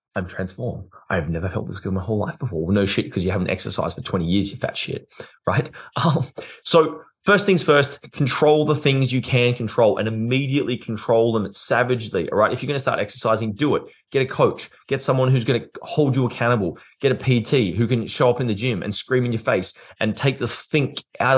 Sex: male